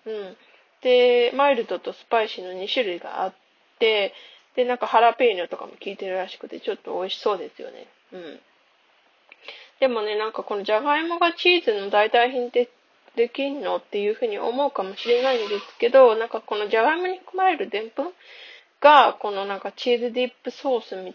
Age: 20-39